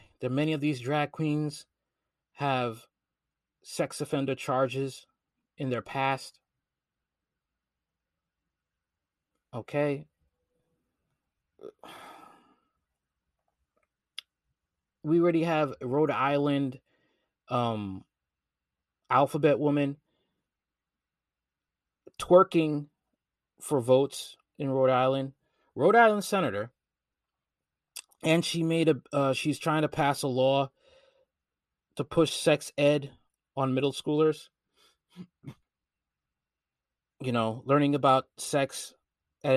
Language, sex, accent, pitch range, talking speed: English, male, American, 120-155 Hz, 85 wpm